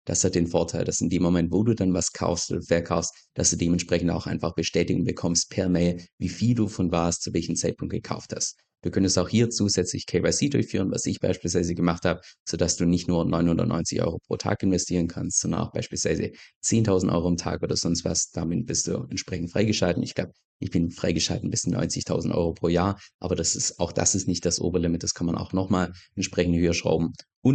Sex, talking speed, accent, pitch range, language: male, 220 wpm, German, 85-100 Hz, German